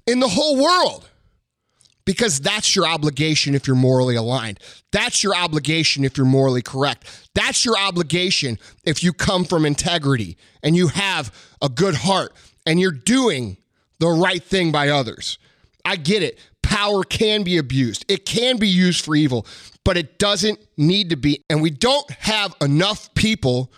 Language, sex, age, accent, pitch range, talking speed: English, male, 30-49, American, 150-215 Hz, 165 wpm